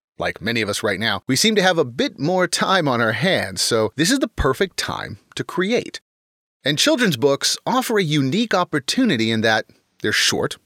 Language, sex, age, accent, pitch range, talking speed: English, male, 30-49, American, 120-185 Hz, 205 wpm